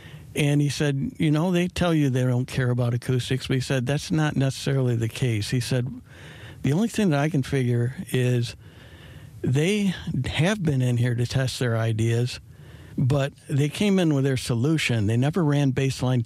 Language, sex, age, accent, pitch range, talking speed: English, male, 60-79, American, 120-140 Hz, 190 wpm